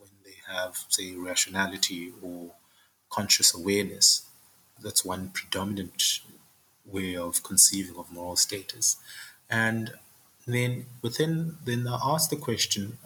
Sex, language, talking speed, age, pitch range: male, English, 105 wpm, 30-49, 95-110 Hz